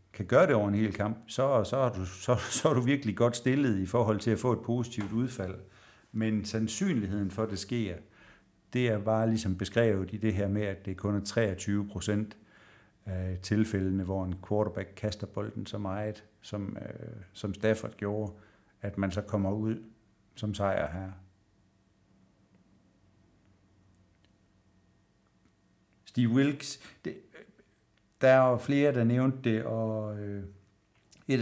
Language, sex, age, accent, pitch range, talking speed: Danish, male, 60-79, native, 100-115 Hz, 155 wpm